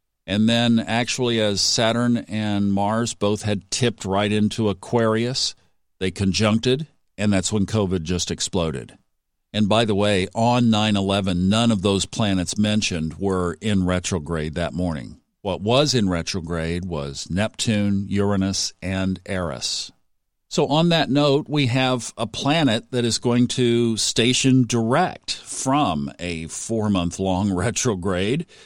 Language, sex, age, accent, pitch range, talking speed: English, male, 50-69, American, 95-130 Hz, 135 wpm